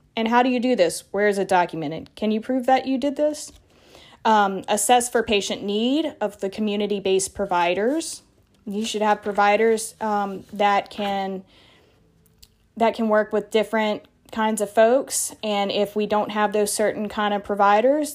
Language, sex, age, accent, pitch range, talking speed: English, female, 20-39, American, 190-225 Hz, 170 wpm